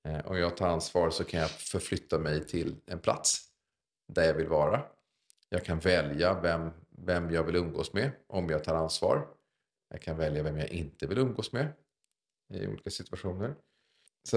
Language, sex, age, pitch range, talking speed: Swedish, male, 40-59, 80-95 Hz, 175 wpm